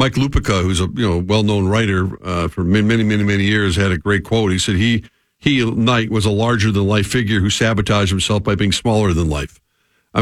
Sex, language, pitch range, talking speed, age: male, English, 100-120 Hz, 230 wpm, 50-69